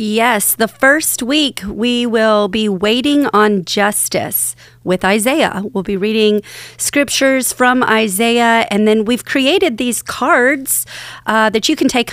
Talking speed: 145 wpm